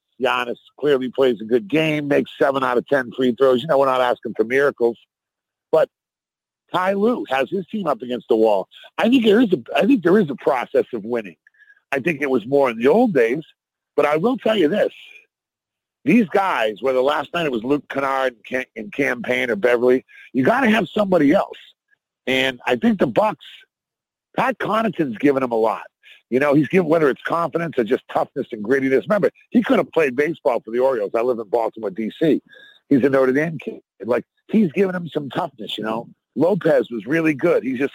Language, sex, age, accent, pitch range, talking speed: English, male, 50-69, American, 130-215 Hz, 210 wpm